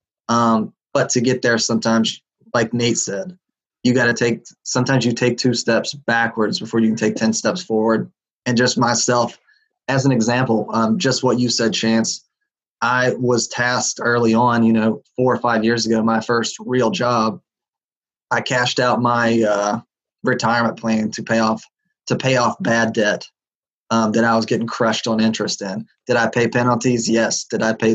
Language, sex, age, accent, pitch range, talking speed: English, male, 20-39, American, 110-125 Hz, 185 wpm